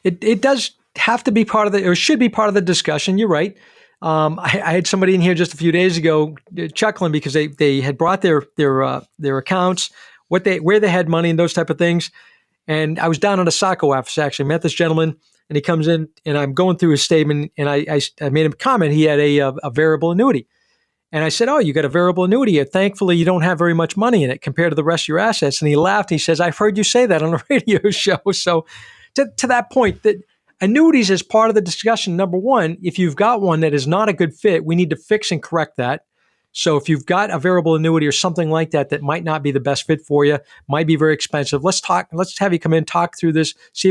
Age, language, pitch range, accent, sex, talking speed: 40-59, English, 155-200 Hz, American, male, 270 wpm